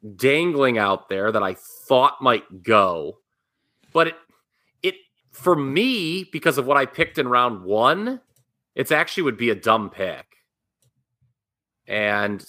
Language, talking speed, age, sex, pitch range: English, 140 wpm, 30-49, male, 105-150 Hz